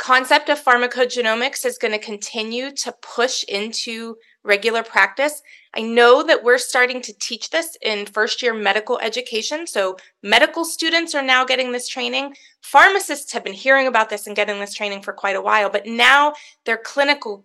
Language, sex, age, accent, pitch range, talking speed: English, female, 30-49, American, 205-280 Hz, 175 wpm